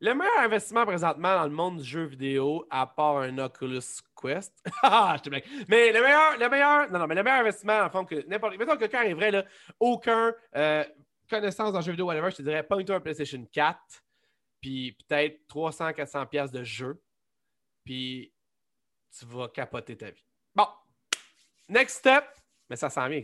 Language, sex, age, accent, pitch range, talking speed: French, male, 30-49, Canadian, 145-215 Hz, 190 wpm